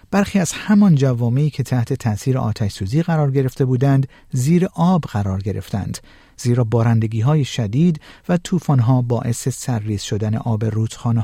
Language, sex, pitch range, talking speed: Persian, male, 115-150 Hz, 150 wpm